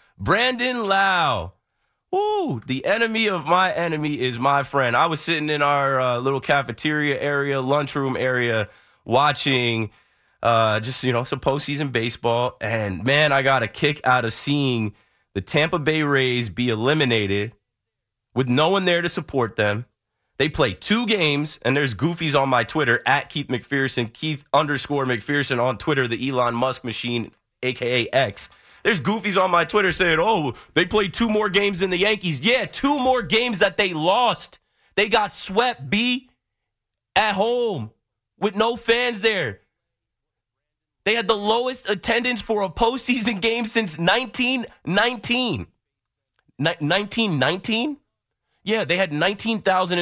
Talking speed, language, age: 150 wpm, English, 30-49